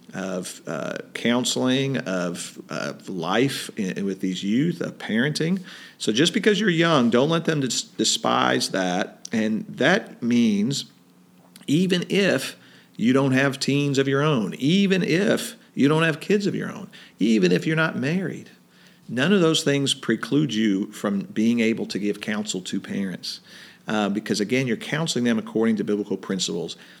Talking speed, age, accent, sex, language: 160 wpm, 50-69, American, male, English